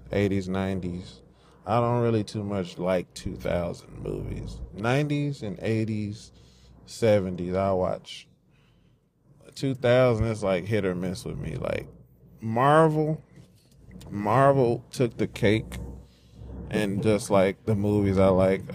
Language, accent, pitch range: English, American, 95-120 Hz